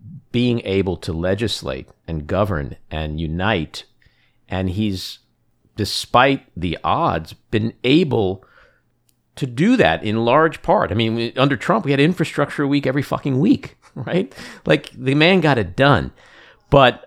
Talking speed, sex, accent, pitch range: 140 wpm, male, American, 95-130 Hz